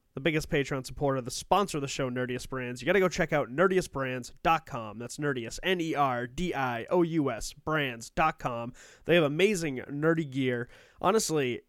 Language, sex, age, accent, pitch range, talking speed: English, male, 20-39, American, 130-160 Hz, 180 wpm